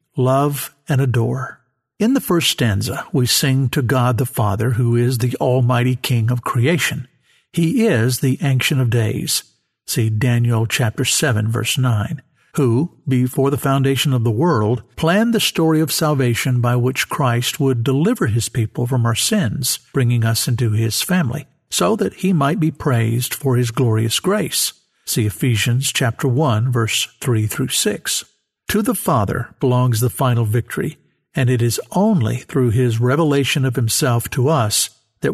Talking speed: 165 wpm